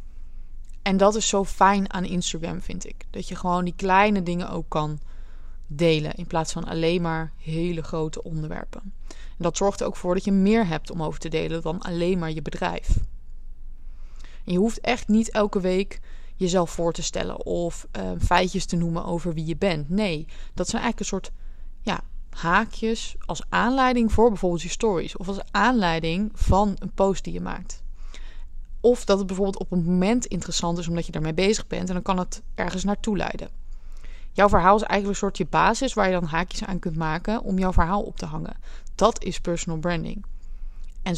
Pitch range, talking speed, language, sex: 165-200 Hz, 195 wpm, Dutch, female